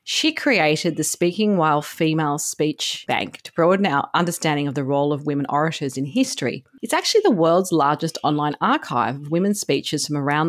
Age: 40-59